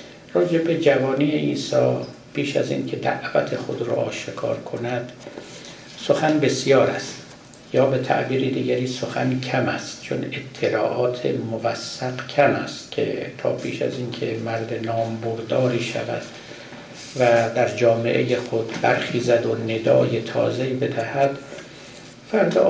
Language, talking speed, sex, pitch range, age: Persian, 120 wpm, male, 115-140 Hz, 60-79